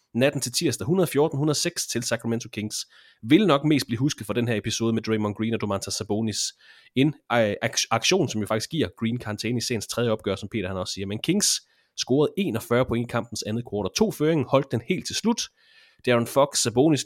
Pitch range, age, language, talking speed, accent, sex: 110-150 Hz, 30-49, Danish, 210 wpm, native, male